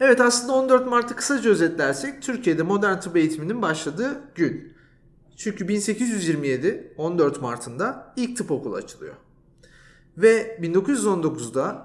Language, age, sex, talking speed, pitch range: Turkish, 40-59, male, 110 wpm, 155-240 Hz